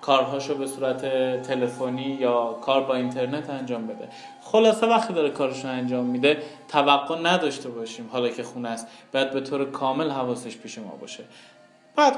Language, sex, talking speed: Persian, male, 160 wpm